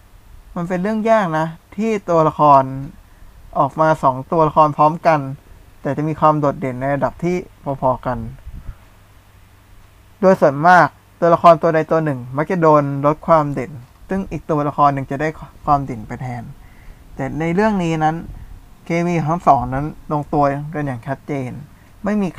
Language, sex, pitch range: Thai, male, 115-160 Hz